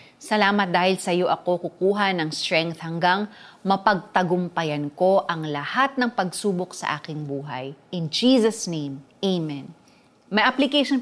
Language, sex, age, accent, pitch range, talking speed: Filipino, female, 20-39, native, 165-235 Hz, 130 wpm